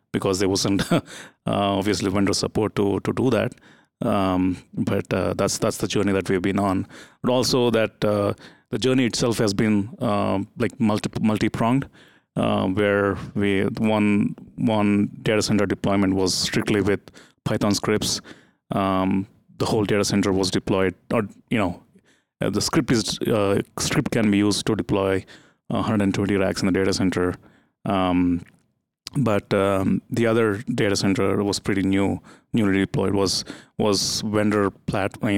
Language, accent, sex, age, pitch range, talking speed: English, Indian, male, 30-49, 95-110 Hz, 160 wpm